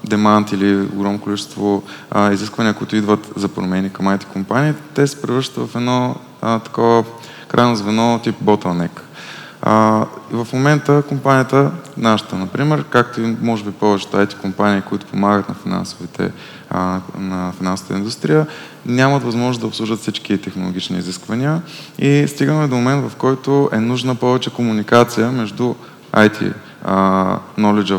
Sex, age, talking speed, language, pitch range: male, 20-39, 135 wpm, Bulgarian, 100-120 Hz